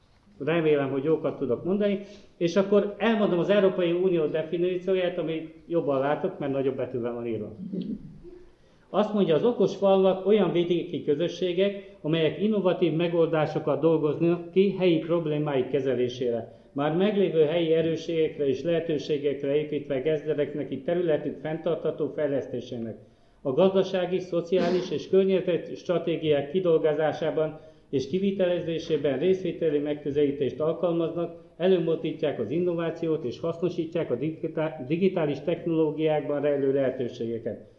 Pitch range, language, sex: 145-180 Hz, Hungarian, male